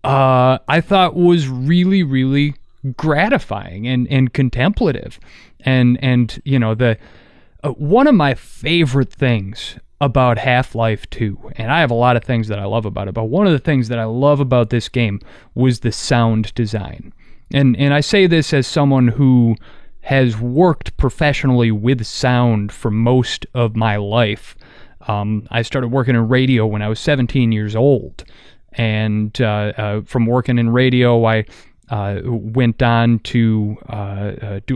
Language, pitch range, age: English, 110-135 Hz, 30-49